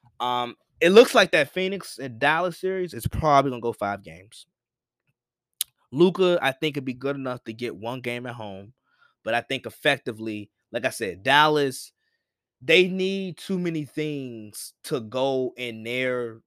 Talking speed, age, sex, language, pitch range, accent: 170 wpm, 20-39, male, English, 120-160 Hz, American